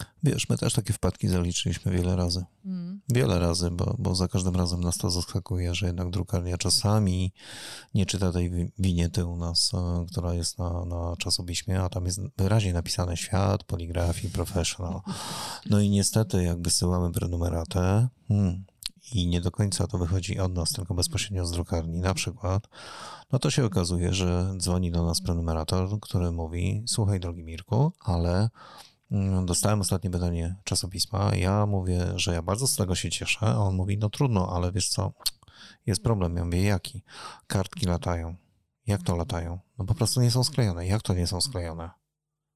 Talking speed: 170 wpm